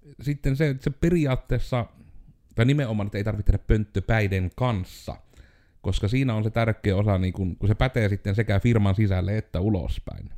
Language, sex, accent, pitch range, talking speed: Finnish, male, native, 90-105 Hz, 170 wpm